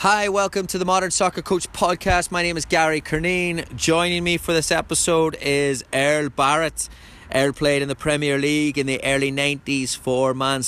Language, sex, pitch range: English, male, 115-135 Hz